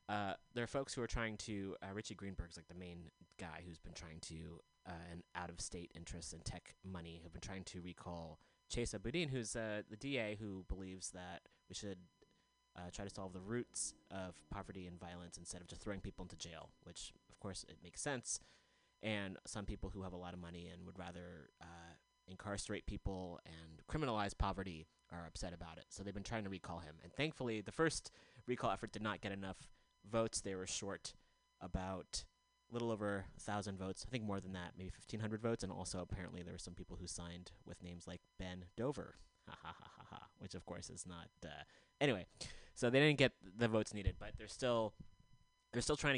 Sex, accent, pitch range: male, American, 85-105 Hz